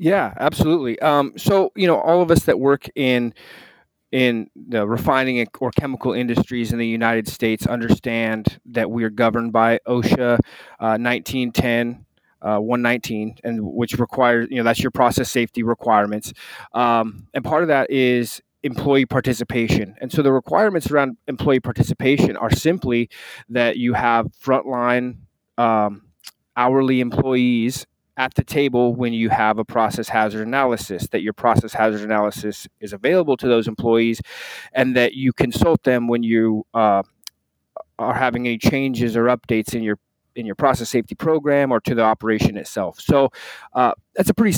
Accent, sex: American, male